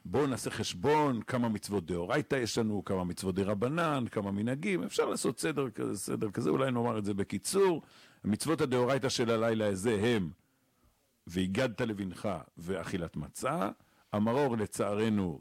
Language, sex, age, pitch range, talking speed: Hebrew, male, 50-69, 115-175 Hz, 140 wpm